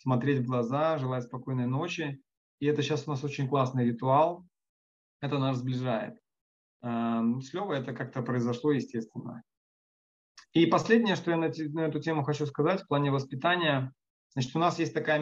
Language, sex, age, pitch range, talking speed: Russian, male, 20-39, 130-155 Hz, 155 wpm